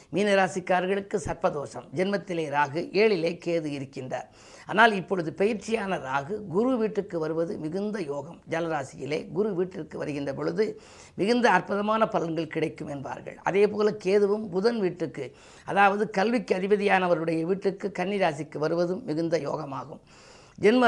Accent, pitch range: native, 165-210 Hz